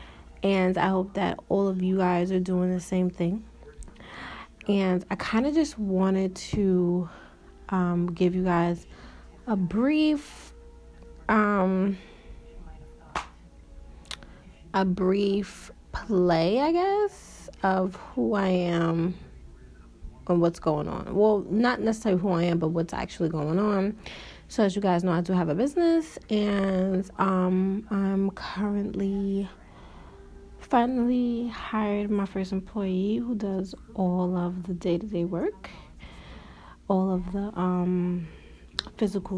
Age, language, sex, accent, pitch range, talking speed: 30-49, English, female, American, 175-205 Hz, 125 wpm